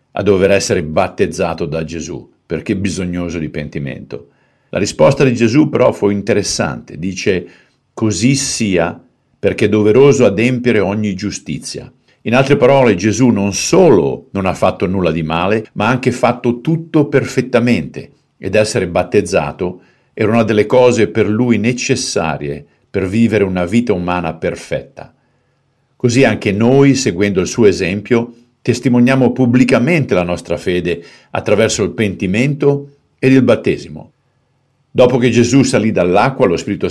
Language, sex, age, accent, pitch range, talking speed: Italian, male, 50-69, native, 95-125 Hz, 140 wpm